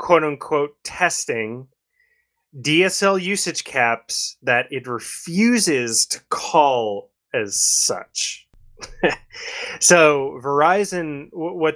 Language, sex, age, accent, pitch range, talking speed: English, male, 20-39, American, 125-175 Hz, 85 wpm